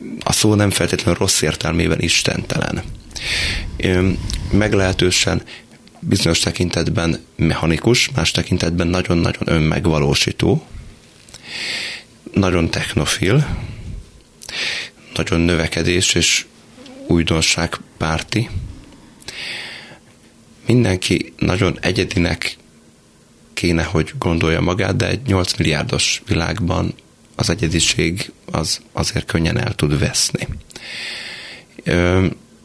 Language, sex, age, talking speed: Hungarian, male, 30-49, 80 wpm